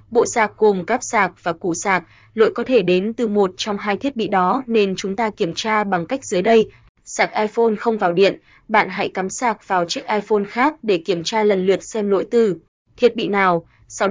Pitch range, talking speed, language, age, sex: 185-225 Hz, 225 wpm, Vietnamese, 20-39, female